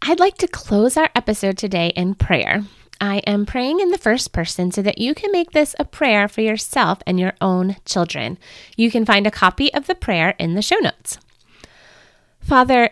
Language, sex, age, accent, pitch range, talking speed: English, female, 30-49, American, 180-250 Hz, 200 wpm